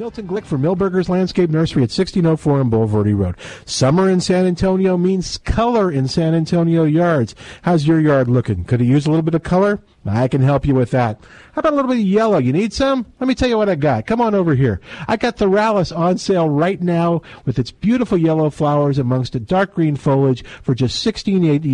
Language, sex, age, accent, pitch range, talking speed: English, male, 50-69, American, 130-190 Hz, 225 wpm